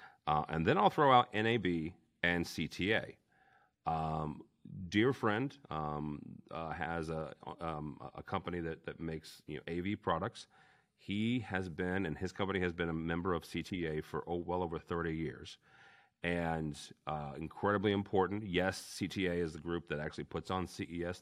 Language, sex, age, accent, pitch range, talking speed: English, male, 40-59, American, 75-95 Hz, 165 wpm